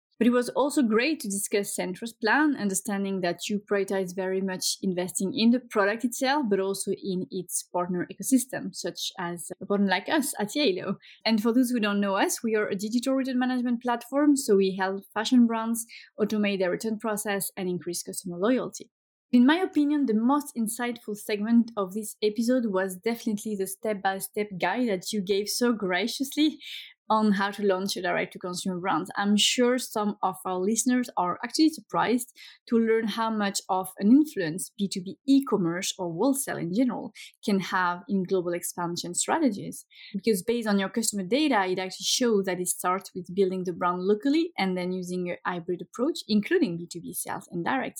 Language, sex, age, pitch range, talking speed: English, female, 20-39, 190-245 Hz, 180 wpm